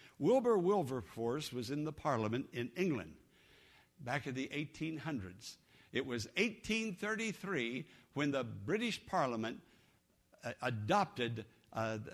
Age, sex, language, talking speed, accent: 60-79, male, English, 100 wpm, American